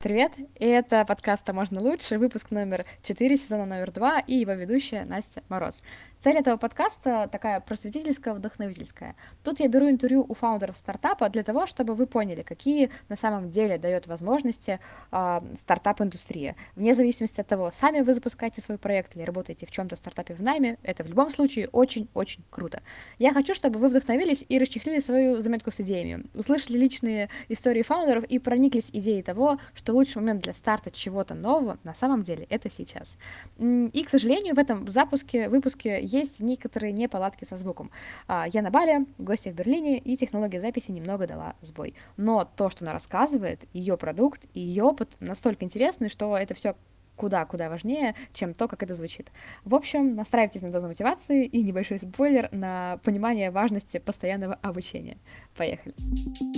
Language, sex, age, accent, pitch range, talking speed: Russian, female, 20-39, native, 195-260 Hz, 165 wpm